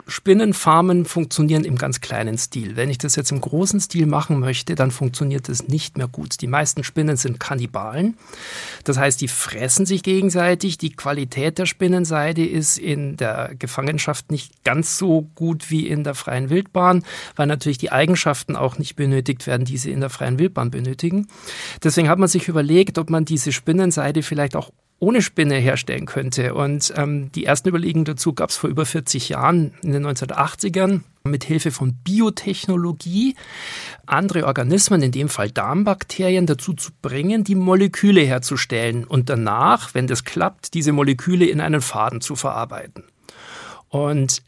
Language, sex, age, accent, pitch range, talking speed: German, male, 50-69, German, 135-180 Hz, 165 wpm